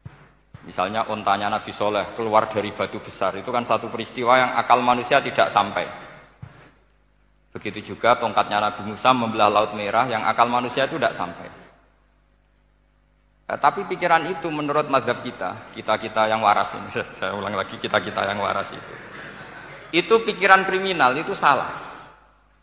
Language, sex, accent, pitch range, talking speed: Indonesian, male, native, 110-140 Hz, 150 wpm